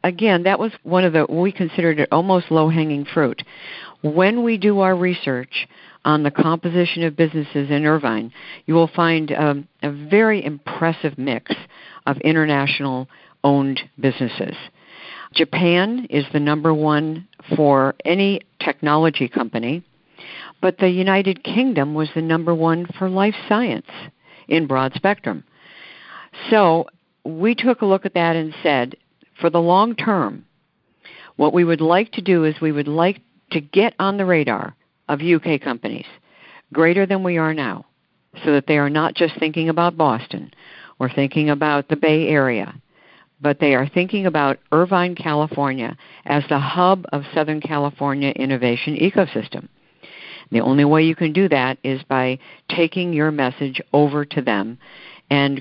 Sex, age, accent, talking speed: female, 60-79, American, 150 wpm